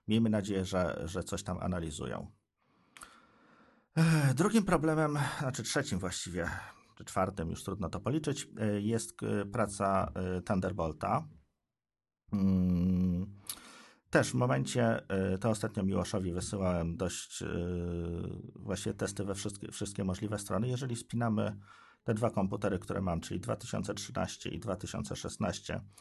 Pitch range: 95-110 Hz